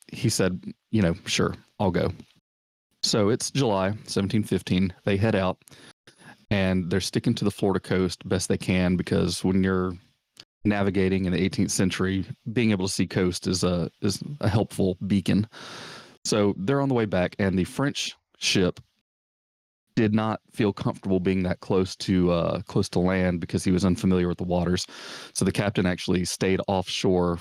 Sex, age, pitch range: male, 30-49, 90-100 Hz